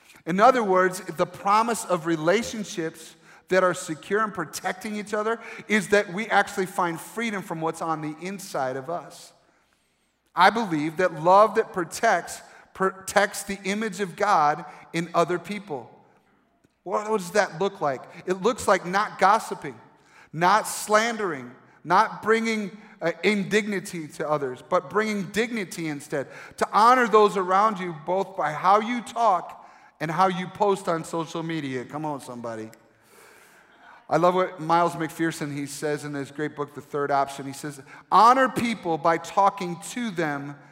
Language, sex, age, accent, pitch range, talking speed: English, male, 40-59, American, 160-205 Hz, 155 wpm